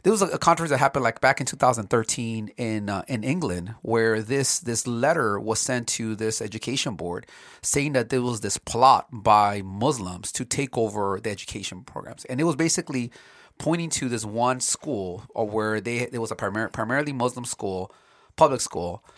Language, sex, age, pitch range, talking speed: English, male, 30-49, 105-140 Hz, 180 wpm